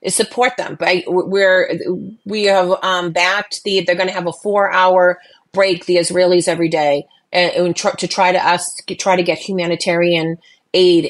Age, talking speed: 30-49, 180 wpm